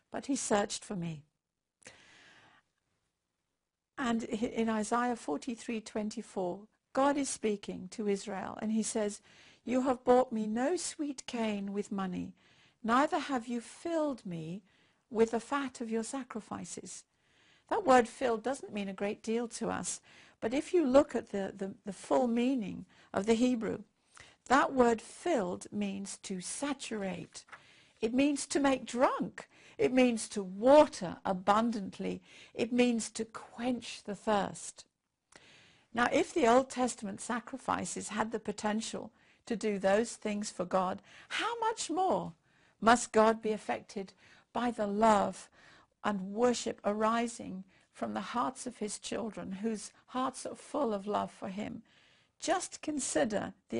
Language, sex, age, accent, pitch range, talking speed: English, female, 60-79, British, 205-255 Hz, 140 wpm